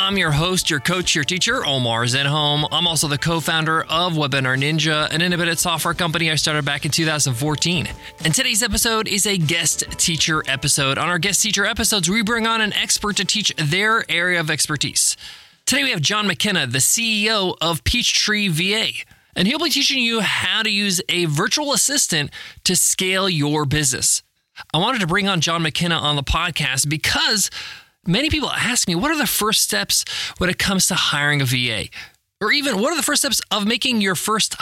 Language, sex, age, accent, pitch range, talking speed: English, male, 20-39, American, 155-215 Hz, 195 wpm